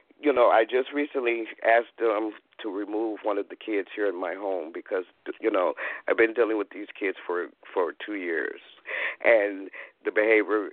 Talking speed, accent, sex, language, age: 185 wpm, American, male, English, 50-69